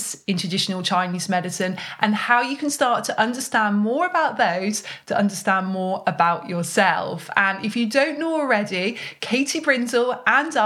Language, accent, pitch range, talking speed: English, British, 195-240 Hz, 160 wpm